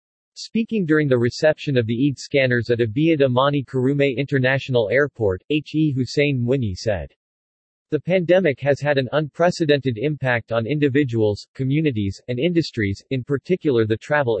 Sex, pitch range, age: male, 115-150 Hz, 40-59